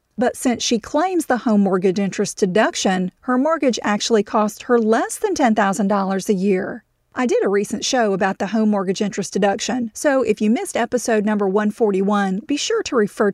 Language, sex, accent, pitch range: English, female, American, 205-255 Hz